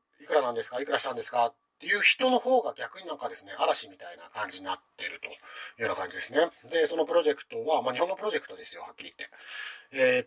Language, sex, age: Japanese, male, 40-59